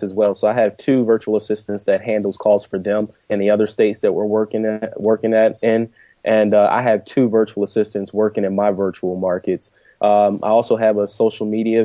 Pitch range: 100-115 Hz